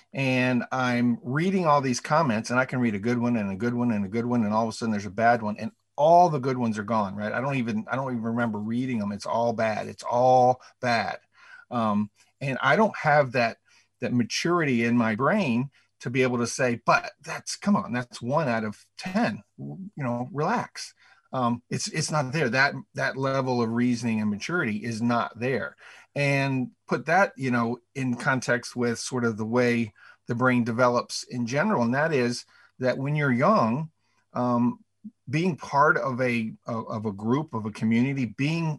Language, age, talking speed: English, 50-69, 205 wpm